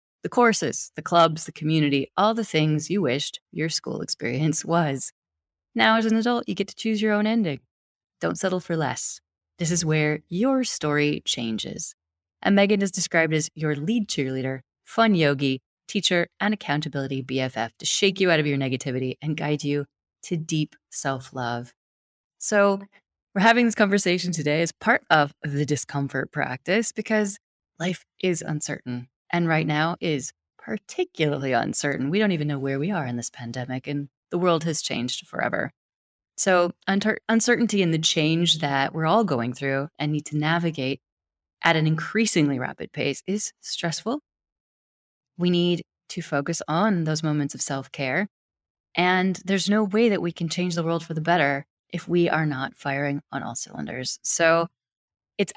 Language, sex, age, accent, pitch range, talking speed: English, female, 20-39, American, 140-185 Hz, 165 wpm